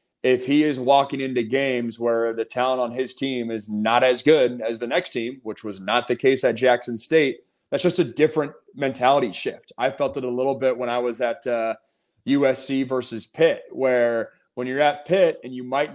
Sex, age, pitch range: male, 30-49, 125-150 Hz